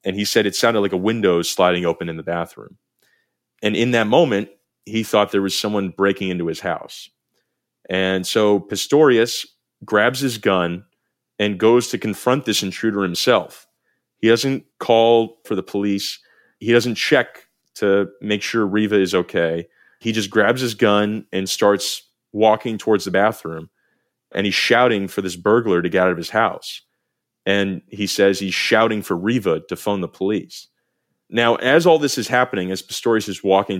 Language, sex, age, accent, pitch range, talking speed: English, male, 30-49, American, 95-115 Hz, 175 wpm